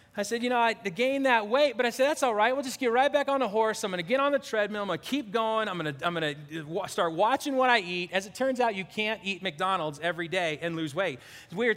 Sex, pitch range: male, 190-270 Hz